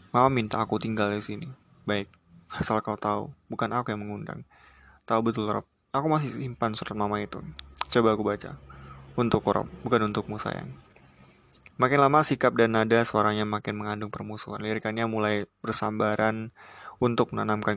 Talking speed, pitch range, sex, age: 150 wpm, 105-120 Hz, male, 20-39